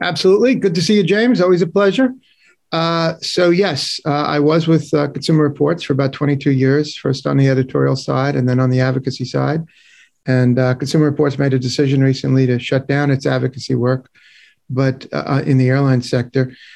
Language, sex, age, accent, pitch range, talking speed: English, male, 40-59, American, 130-155 Hz, 195 wpm